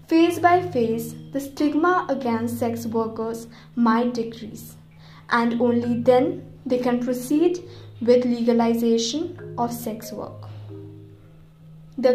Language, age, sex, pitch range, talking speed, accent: English, 20-39, female, 230-280 Hz, 110 wpm, Indian